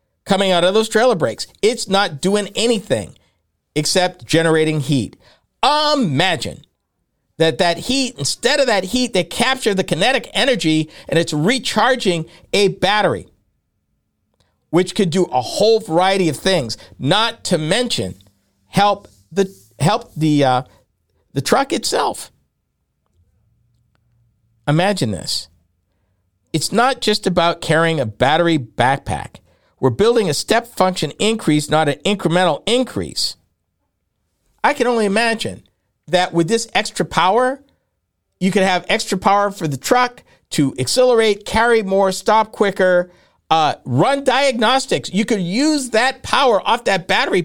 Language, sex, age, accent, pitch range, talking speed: English, male, 50-69, American, 145-225 Hz, 130 wpm